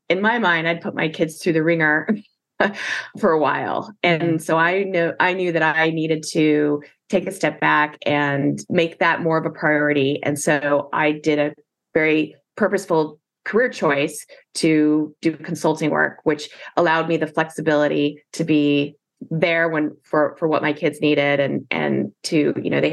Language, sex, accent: English, female, American